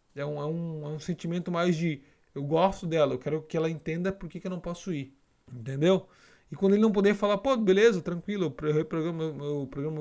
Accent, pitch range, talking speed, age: Brazilian, 155-195 Hz, 220 wpm, 20-39